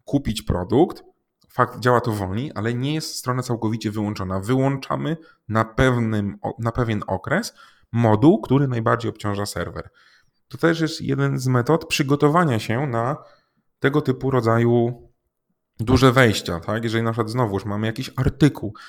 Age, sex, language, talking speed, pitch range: 30-49, male, Polish, 145 wpm, 110-130 Hz